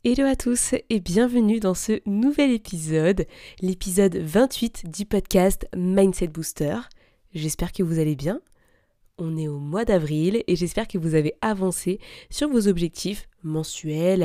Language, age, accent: French, 20-39, French